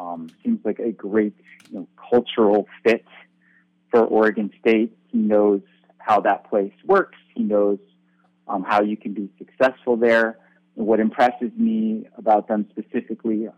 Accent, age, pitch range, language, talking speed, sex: American, 30-49, 105-135 Hz, English, 135 wpm, male